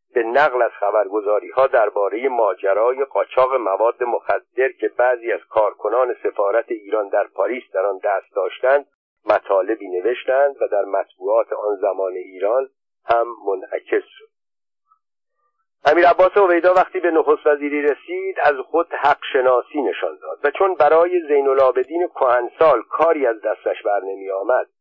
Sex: male